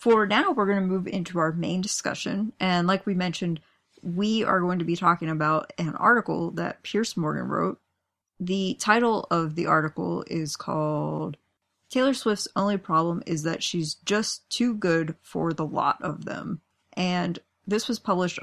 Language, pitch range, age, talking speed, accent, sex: English, 160-190 Hz, 30-49, 170 wpm, American, female